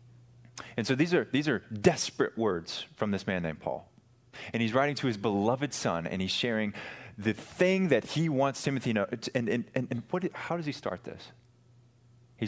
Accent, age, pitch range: American, 30-49, 95-120 Hz